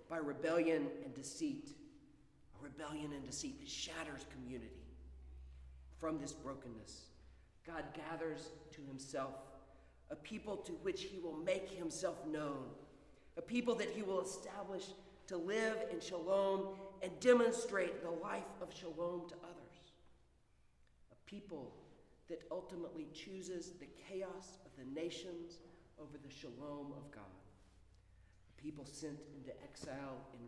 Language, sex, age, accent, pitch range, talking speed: English, male, 40-59, American, 140-190 Hz, 130 wpm